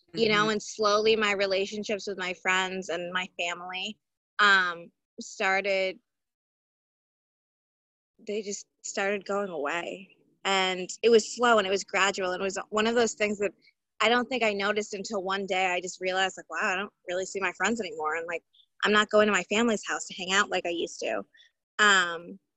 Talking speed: 190 wpm